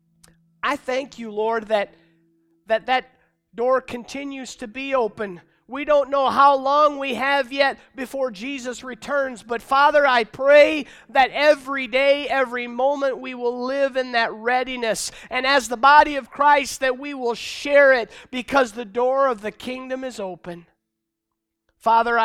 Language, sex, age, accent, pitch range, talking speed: English, male, 50-69, American, 185-255 Hz, 155 wpm